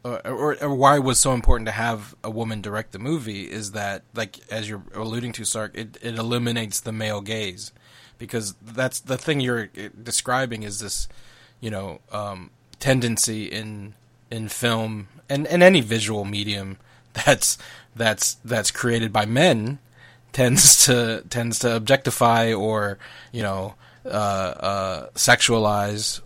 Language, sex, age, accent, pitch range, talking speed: English, male, 20-39, American, 105-125 Hz, 150 wpm